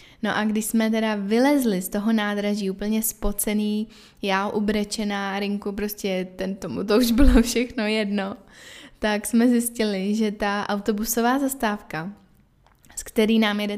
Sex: female